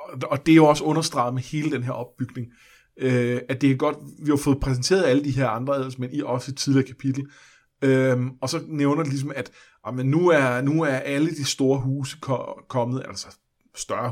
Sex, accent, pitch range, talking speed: male, native, 120-145 Hz, 200 wpm